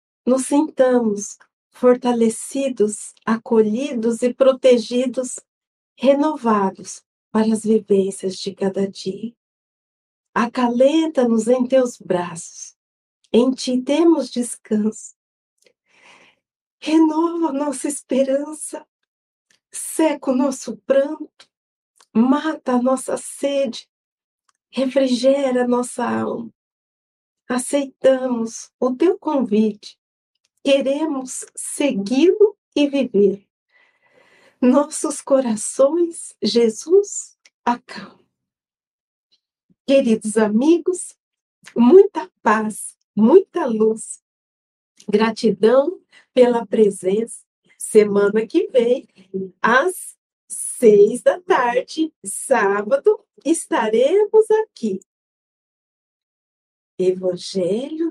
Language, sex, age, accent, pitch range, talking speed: Portuguese, female, 50-69, Brazilian, 220-300 Hz, 70 wpm